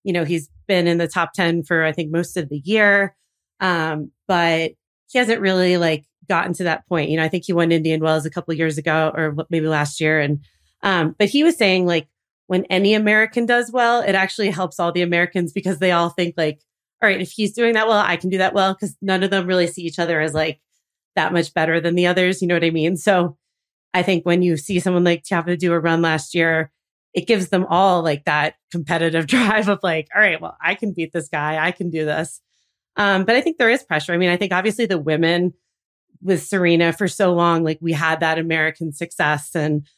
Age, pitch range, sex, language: 30-49, 160-190 Hz, female, English